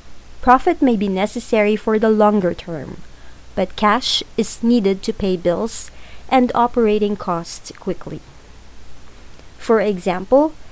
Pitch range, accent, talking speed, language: 185-235 Hz, Filipino, 120 wpm, English